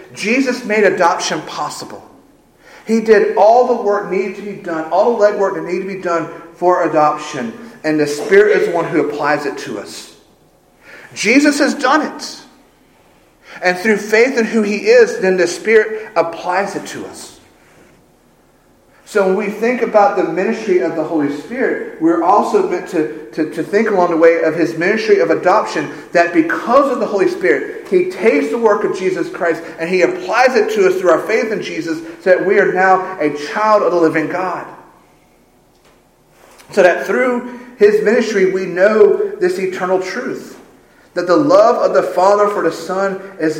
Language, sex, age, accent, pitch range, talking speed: English, male, 40-59, American, 170-250 Hz, 185 wpm